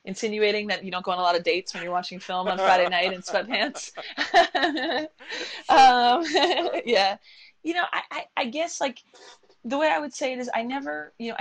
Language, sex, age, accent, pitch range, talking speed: English, female, 20-39, American, 180-215 Hz, 205 wpm